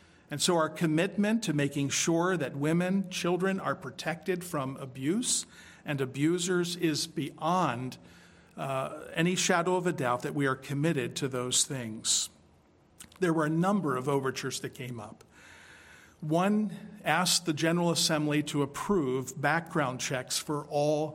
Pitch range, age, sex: 140-175 Hz, 50-69, male